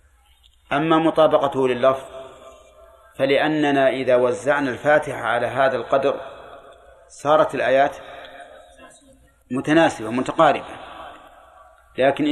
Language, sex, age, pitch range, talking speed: Arabic, male, 30-49, 125-140 Hz, 75 wpm